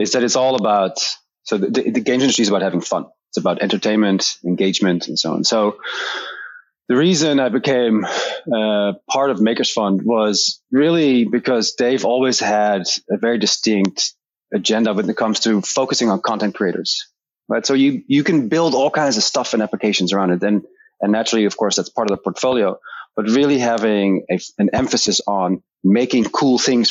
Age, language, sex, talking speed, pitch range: 30-49, English, male, 180 wpm, 105-130 Hz